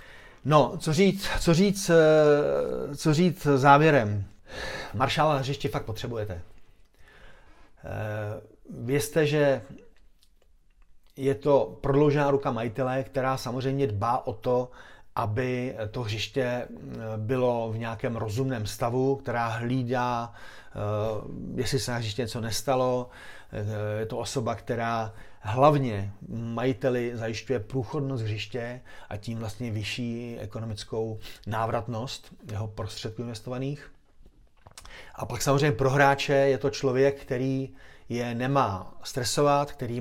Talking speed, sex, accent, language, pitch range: 105 wpm, male, native, Czech, 110-135 Hz